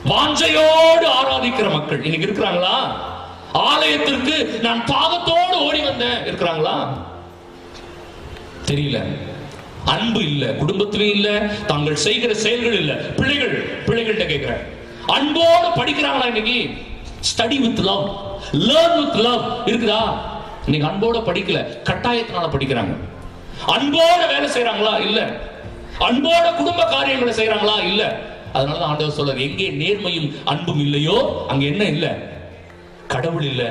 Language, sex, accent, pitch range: Tamil, male, native, 140-230 Hz